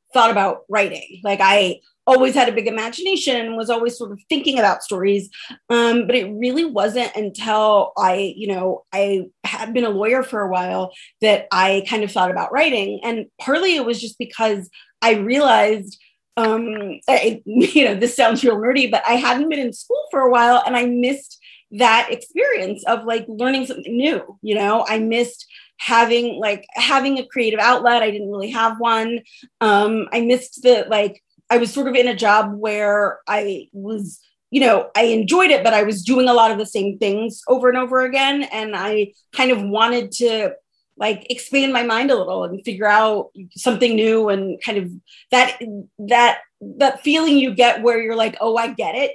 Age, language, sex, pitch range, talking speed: 30-49, English, female, 210-255 Hz, 195 wpm